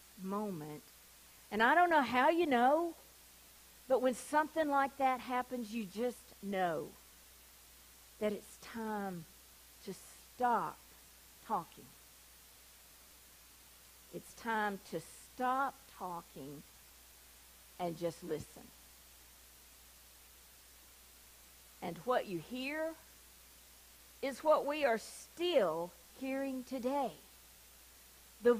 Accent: American